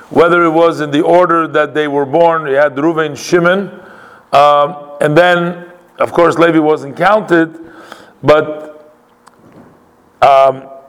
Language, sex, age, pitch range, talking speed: English, male, 40-59, 140-165 Hz, 140 wpm